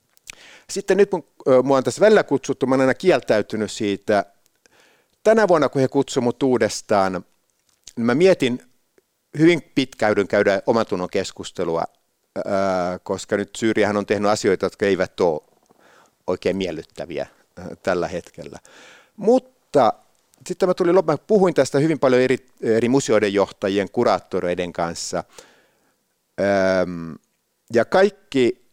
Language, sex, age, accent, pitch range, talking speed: Finnish, male, 50-69, native, 105-170 Hz, 115 wpm